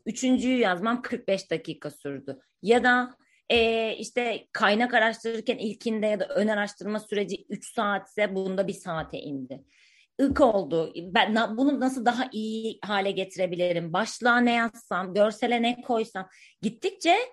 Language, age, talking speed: Turkish, 30-49, 135 wpm